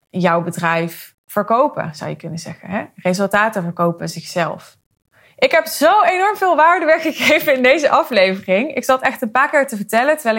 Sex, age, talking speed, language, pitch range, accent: female, 20-39, 165 wpm, Dutch, 200-265 Hz, Dutch